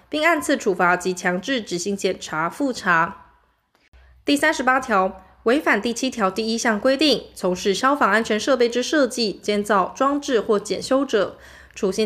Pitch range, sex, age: 195-260 Hz, female, 20-39